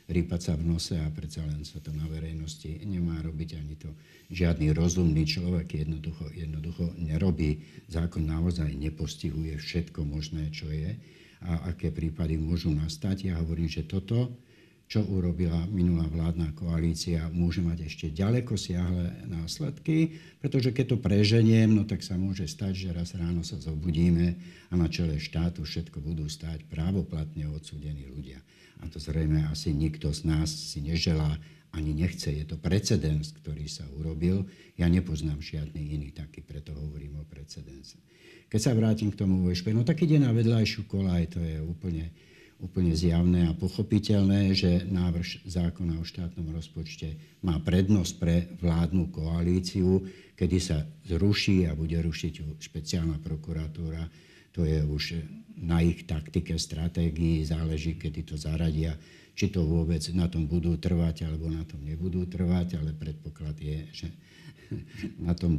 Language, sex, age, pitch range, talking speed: Slovak, male, 60-79, 80-90 Hz, 150 wpm